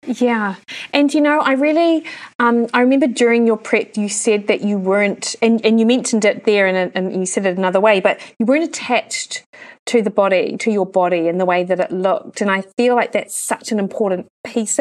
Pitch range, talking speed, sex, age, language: 195-230 Hz, 225 wpm, female, 30-49, English